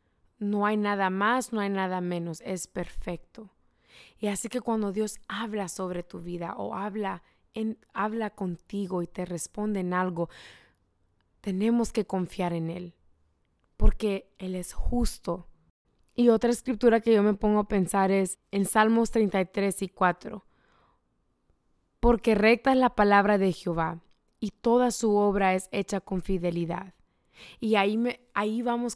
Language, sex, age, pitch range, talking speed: English, female, 20-39, 185-225 Hz, 150 wpm